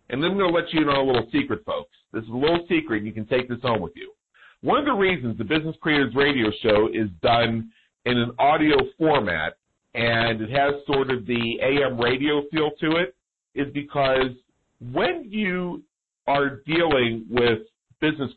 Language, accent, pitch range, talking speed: English, American, 115-145 Hz, 195 wpm